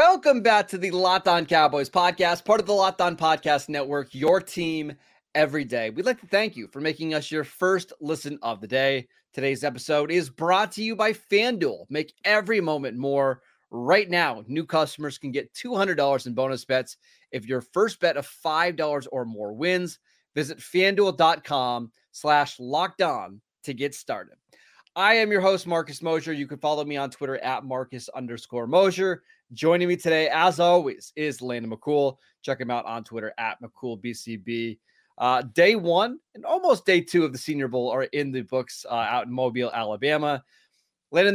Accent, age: American, 30-49